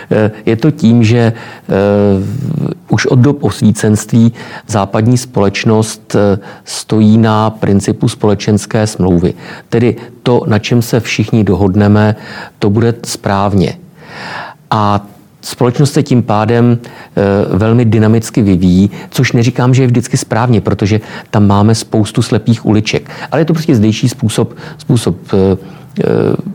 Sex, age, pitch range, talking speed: male, 50-69, 105-125 Hz, 125 wpm